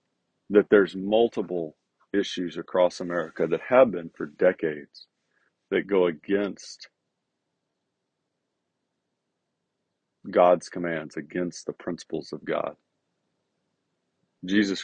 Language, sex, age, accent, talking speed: English, male, 40-59, American, 90 wpm